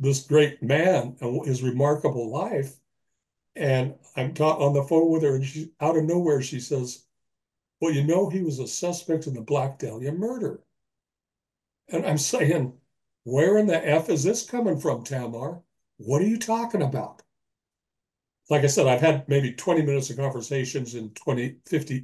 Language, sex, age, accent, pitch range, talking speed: English, male, 60-79, American, 125-155 Hz, 170 wpm